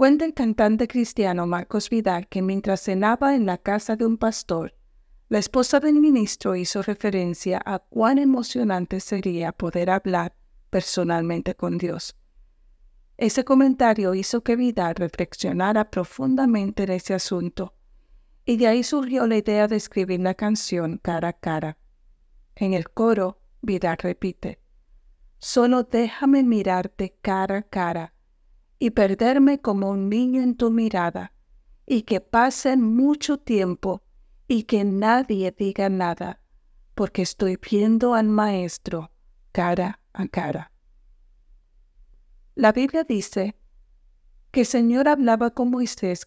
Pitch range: 180-235 Hz